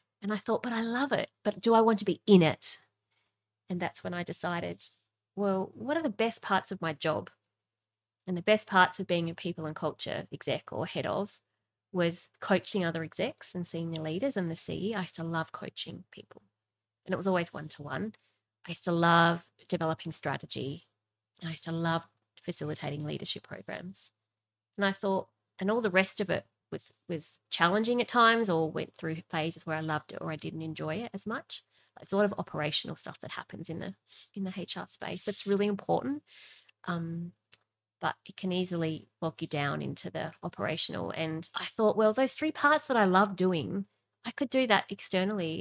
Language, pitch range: English, 155-200 Hz